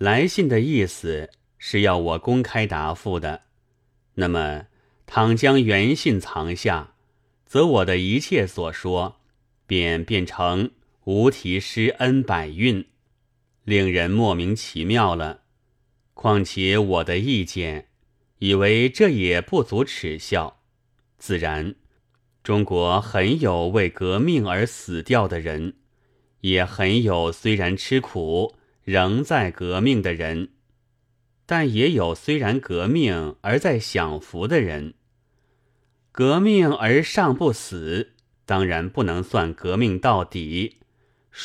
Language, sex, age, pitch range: Chinese, male, 30-49, 90-125 Hz